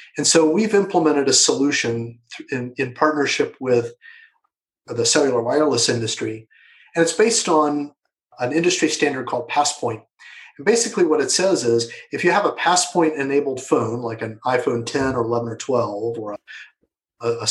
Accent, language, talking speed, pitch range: American, English, 160 wpm, 120-160 Hz